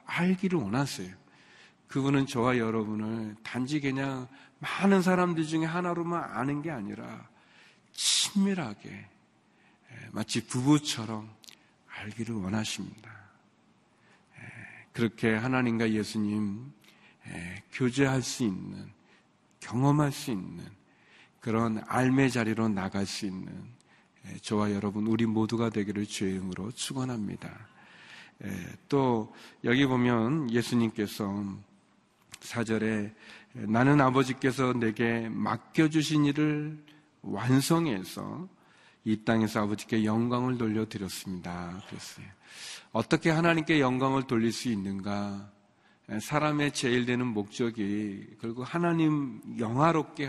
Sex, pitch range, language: male, 110-140 Hz, Korean